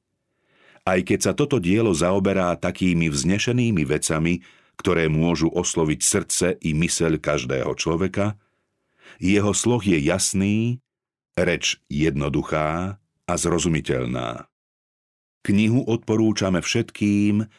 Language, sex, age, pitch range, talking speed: Slovak, male, 50-69, 80-105 Hz, 95 wpm